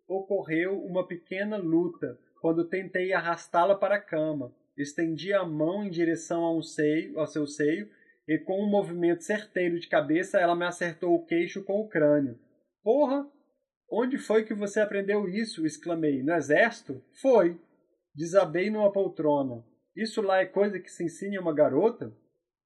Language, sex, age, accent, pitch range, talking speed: Portuguese, male, 20-39, Brazilian, 155-190 Hz, 150 wpm